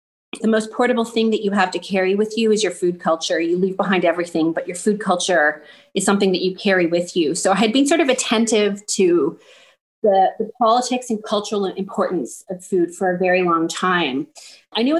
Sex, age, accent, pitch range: female, 30-49, American, 180-225 Hz